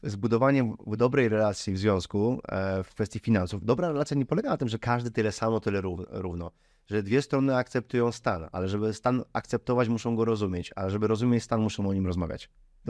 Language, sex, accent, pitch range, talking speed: Polish, male, native, 100-125 Hz, 190 wpm